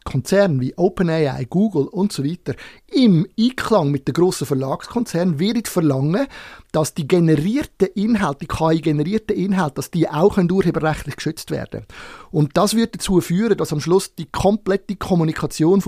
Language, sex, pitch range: German, male, 160-210 Hz